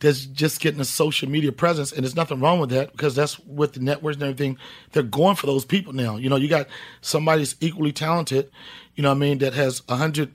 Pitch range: 135-160 Hz